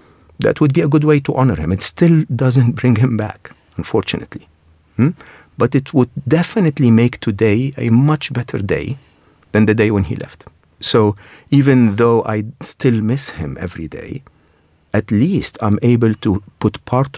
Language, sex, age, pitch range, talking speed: English, male, 50-69, 95-130 Hz, 170 wpm